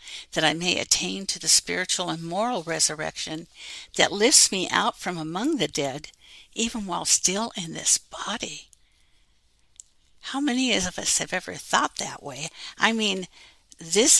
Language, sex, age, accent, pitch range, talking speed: English, female, 60-79, American, 155-205 Hz, 150 wpm